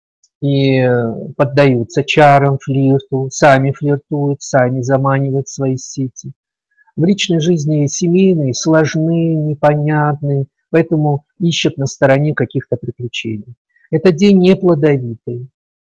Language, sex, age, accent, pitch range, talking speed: Russian, male, 50-69, native, 130-160 Hz, 95 wpm